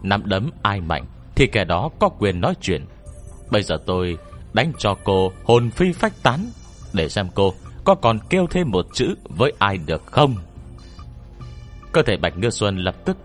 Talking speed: 185 wpm